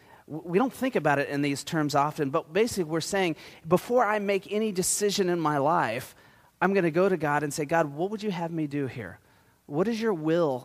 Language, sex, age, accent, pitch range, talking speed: English, male, 30-49, American, 135-180 Hz, 230 wpm